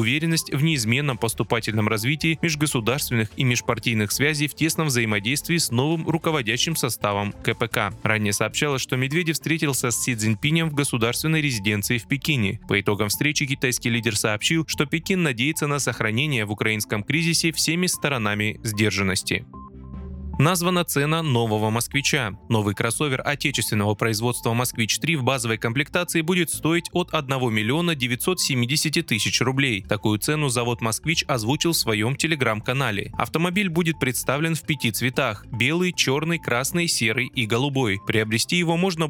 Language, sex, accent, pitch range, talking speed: Russian, male, native, 115-155 Hz, 140 wpm